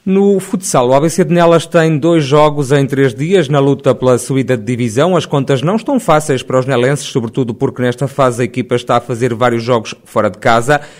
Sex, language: male, Portuguese